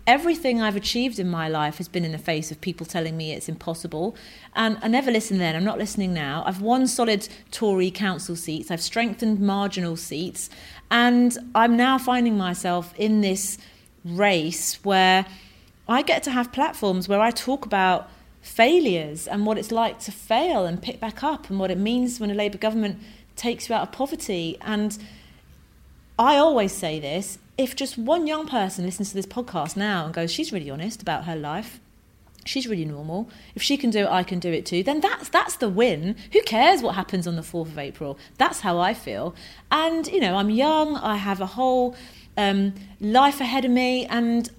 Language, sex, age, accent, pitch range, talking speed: English, female, 30-49, British, 180-245 Hz, 200 wpm